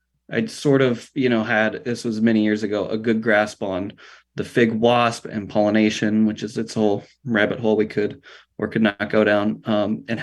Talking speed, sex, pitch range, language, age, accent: 205 wpm, male, 105-125 Hz, English, 20-39, American